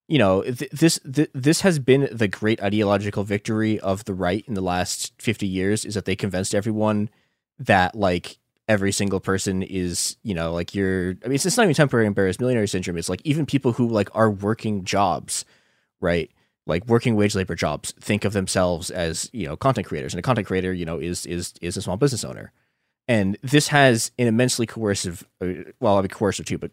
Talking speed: 205 wpm